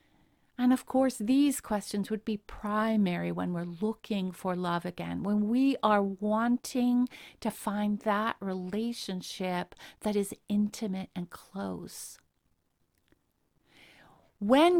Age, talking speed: 50-69, 115 wpm